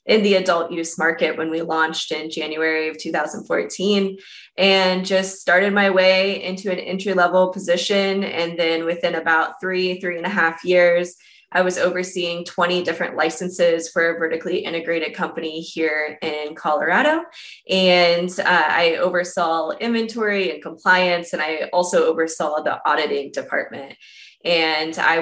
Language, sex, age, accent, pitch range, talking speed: English, female, 20-39, American, 165-195 Hz, 150 wpm